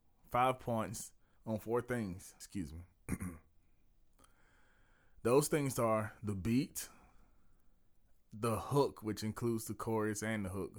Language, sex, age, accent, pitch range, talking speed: English, male, 30-49, American, 105-125 Hz, 115 wpm